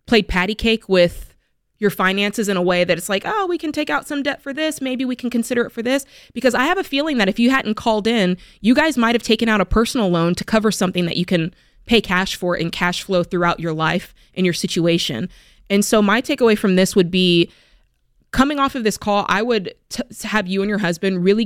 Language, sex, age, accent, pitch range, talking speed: English, female, 20-39, American, 175-220 Hz, 245 wpm